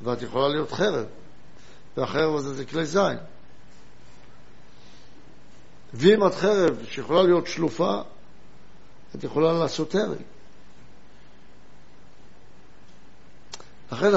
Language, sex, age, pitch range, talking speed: Hebrew, male, 60-79, 155-190 Hz, 85 wpm